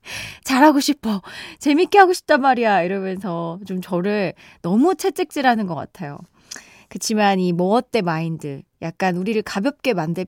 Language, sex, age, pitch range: Korean, female, 20-39, 195-300 Hz